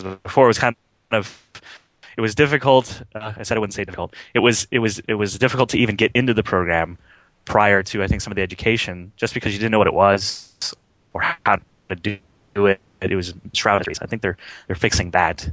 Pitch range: 90-110 Hz